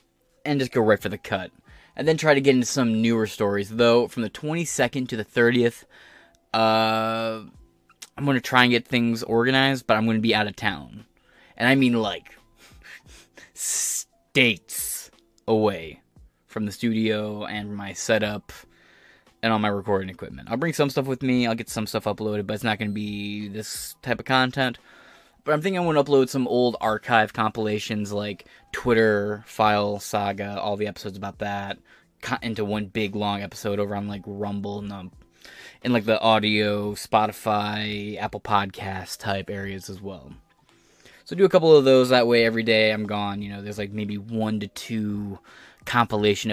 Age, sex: 20-39, male